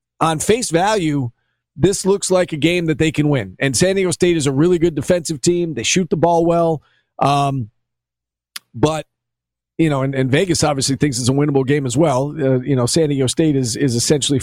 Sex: male